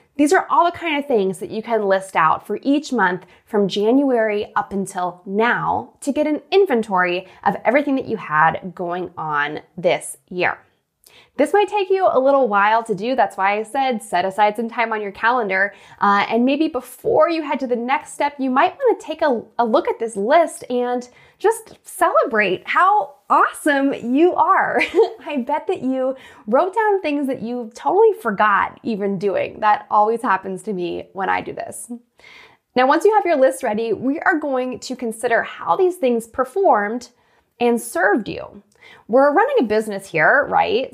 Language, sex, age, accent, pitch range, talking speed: English, female, 10-29, American, 200-300 Hz, 185 wpm